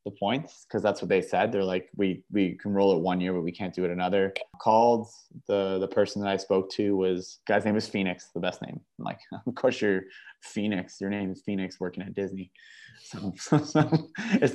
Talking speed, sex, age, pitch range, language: 220 wpm, male, 20-39, 95-110 Hz, English